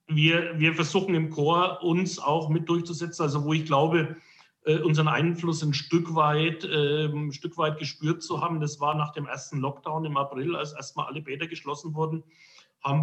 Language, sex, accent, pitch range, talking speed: German, male, German, 135-155 Hz, 180 wpm